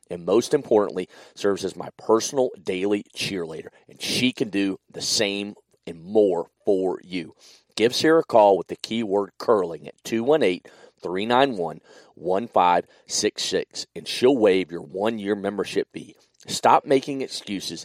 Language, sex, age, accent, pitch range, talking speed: English, male, 40-59, American, 100-130 Hz, 130 wpm